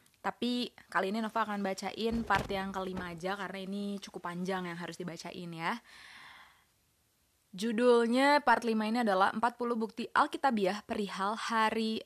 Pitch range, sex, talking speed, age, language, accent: 195-250 Hz, female, 140 wpm, 20-39, Indonesian, native